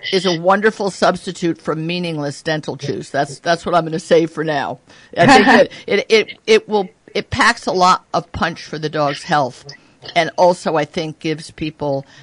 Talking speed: 195 wpm